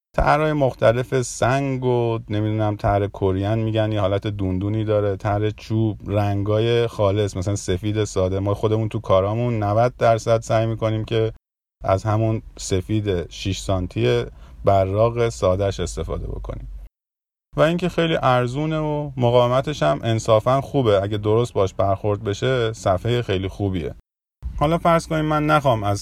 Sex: male